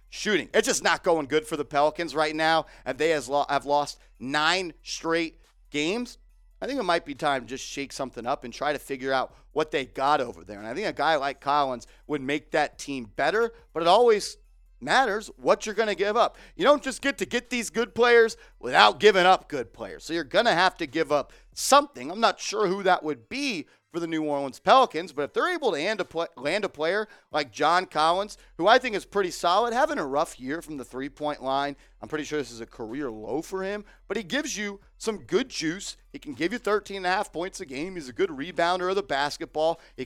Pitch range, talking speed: 145-210 Hz, 230 wpm